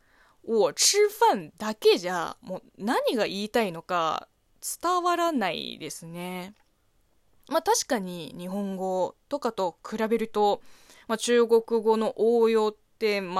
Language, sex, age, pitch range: Japanese, female, 20-39, 185-285 Hz